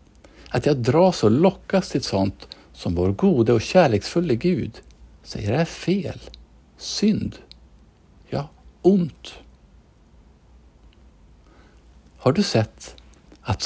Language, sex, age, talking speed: Swedish, male, 60-79, 105 wpm